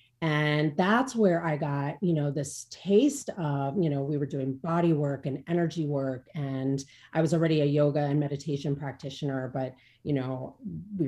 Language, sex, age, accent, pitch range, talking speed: English, female, 30-49, American, 140-170 Hz, 180 wpm